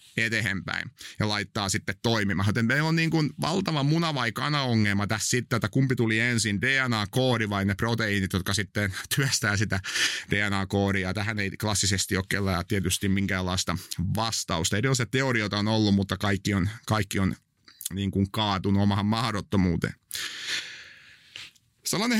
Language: Finnish